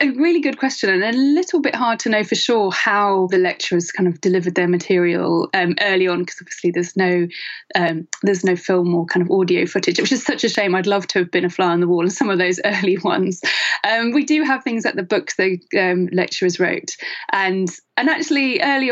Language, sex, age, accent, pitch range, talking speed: English, female, 20-39, British, 180-235 Hz, 235 wpm